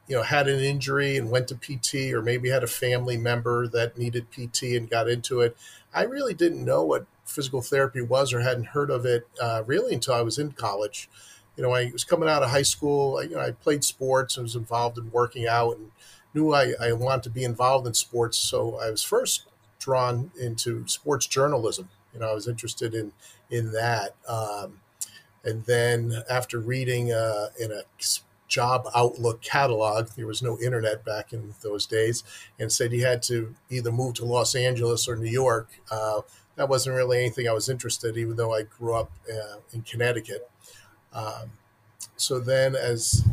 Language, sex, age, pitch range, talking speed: English, male, 40-59, 115-130 Hz, 195 wpm